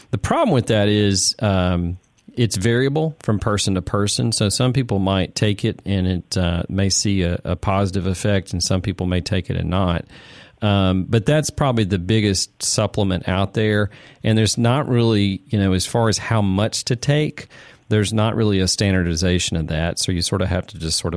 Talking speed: 205 wpm